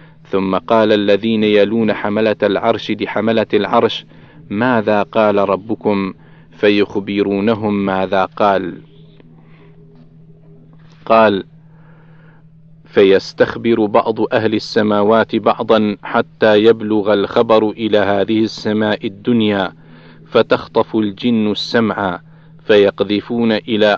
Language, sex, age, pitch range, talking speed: Arabic, male, 50-69, 100-120 Hz, 80 wpm